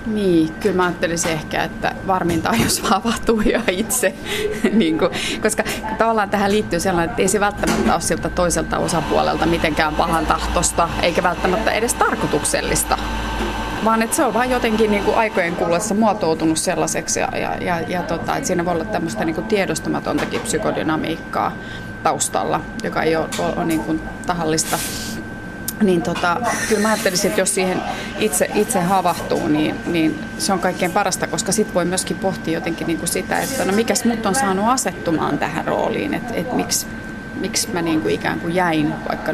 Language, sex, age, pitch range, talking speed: Finnish, female, 30-49, 165-205 Hz, 165 wpm